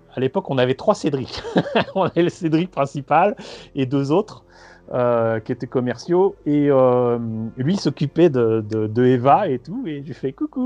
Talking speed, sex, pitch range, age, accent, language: 195 wpm, male, 115-155 Hz, 30-49, French, French